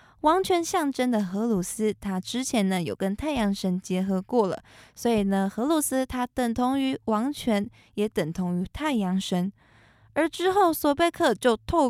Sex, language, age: female, Chinese, 20-39